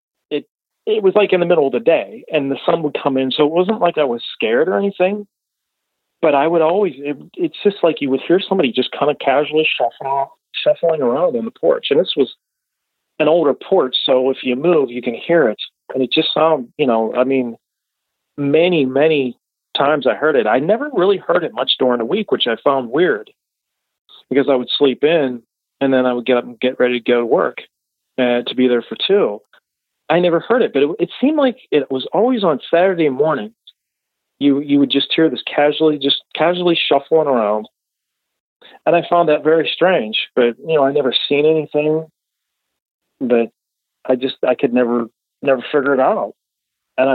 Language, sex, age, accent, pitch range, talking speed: English, male, 40-59, American, 125-175 Hz, 205 wpm